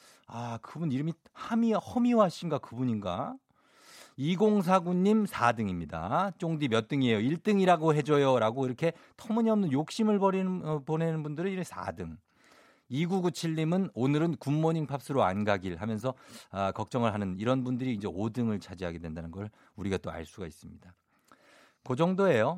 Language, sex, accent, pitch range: Korean, male, native, 110-175 Hz